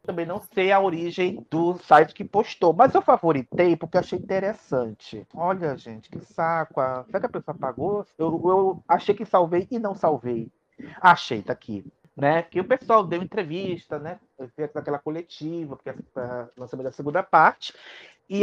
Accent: Brazilian